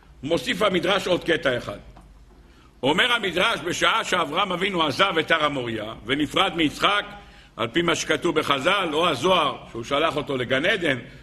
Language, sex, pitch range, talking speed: Hebrew, male, 140-200 Hz, 155 wpm